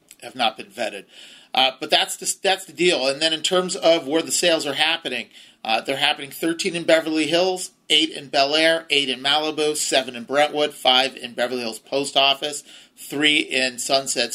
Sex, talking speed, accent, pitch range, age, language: male, 195 wpm, American, 125-150 Hz, 40-59, English